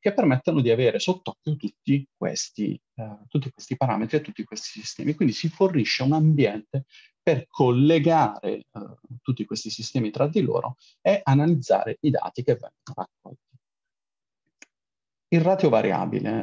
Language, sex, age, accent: Italian, male, 40-59, native